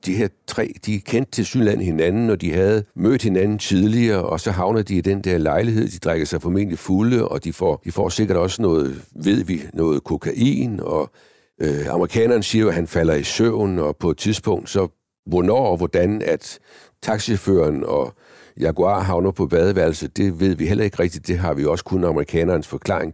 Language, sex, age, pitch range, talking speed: Danish, male, 60-79, 80-100 Hz, 195 wpm